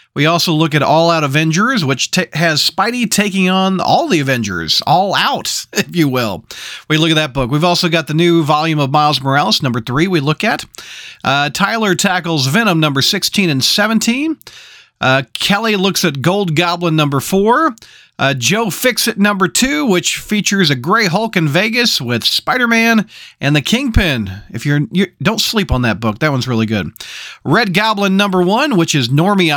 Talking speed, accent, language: 190 wpm, American, English